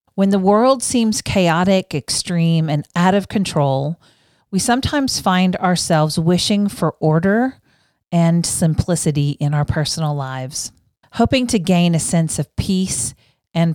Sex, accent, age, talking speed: female, American, 40-59, 135 wpm